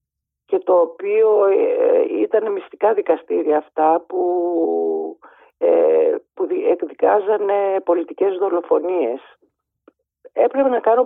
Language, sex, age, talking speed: Greek, female, 50-69, 80 wpm